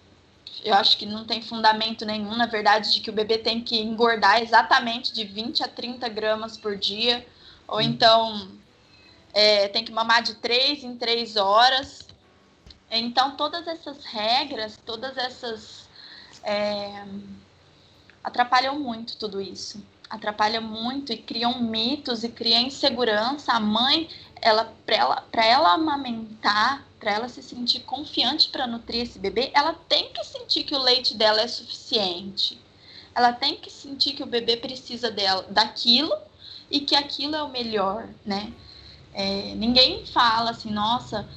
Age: 20-39